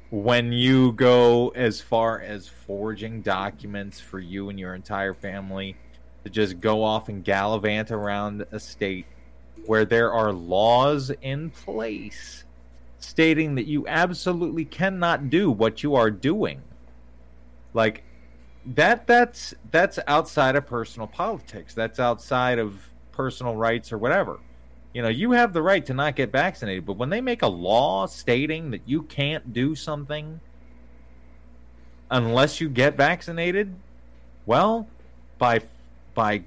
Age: 30-49